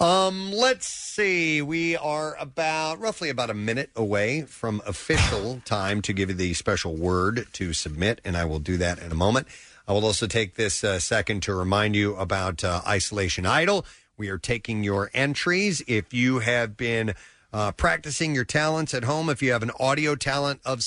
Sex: male